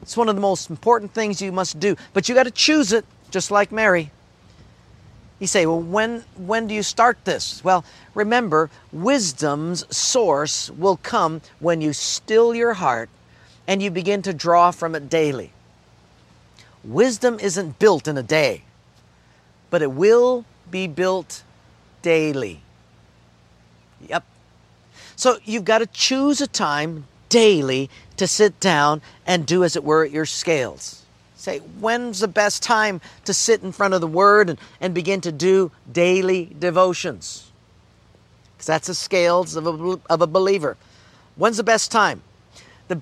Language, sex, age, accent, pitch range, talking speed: English, male, 50-69, American, 150-210 Hz, 150 wpm